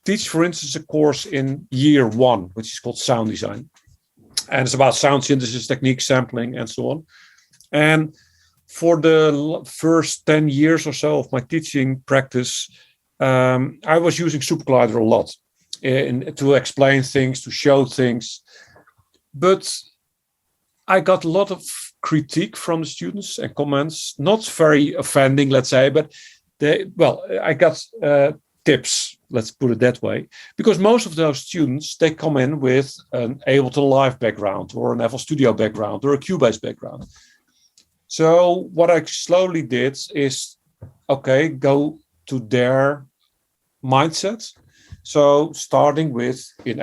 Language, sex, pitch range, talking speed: English, male, 130-155 Hz, 150 wpm